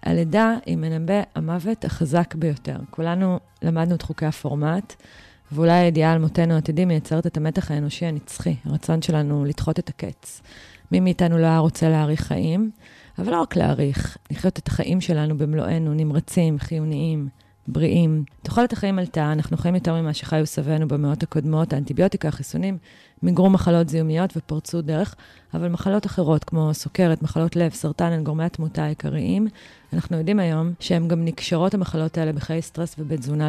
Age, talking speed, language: 30-49, 155 wpm, Hebrew